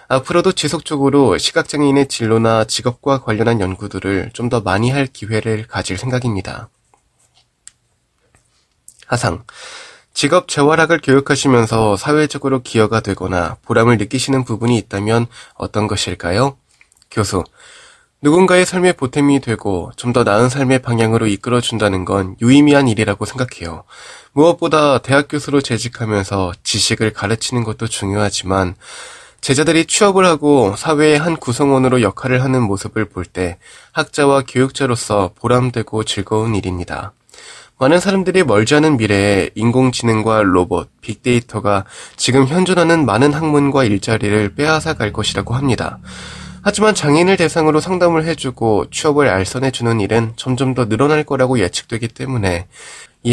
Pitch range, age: 110-145 Hz, 20-39